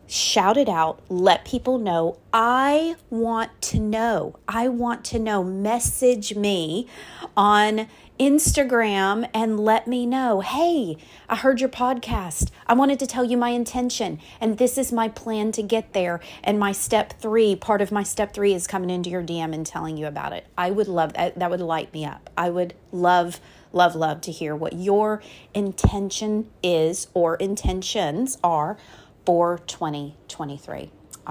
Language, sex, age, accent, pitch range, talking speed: English, female, 30-49, American, 170-225 Hz, 165 wpm